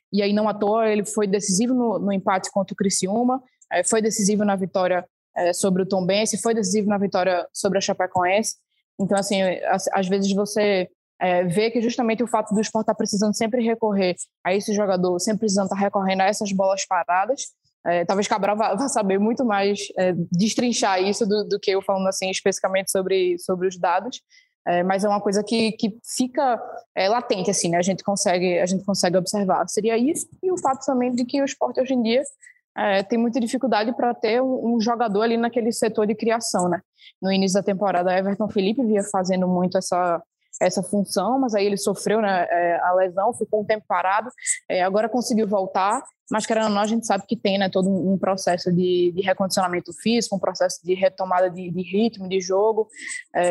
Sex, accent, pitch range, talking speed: female, Brazilian, 190-225 Hz, 205 wpm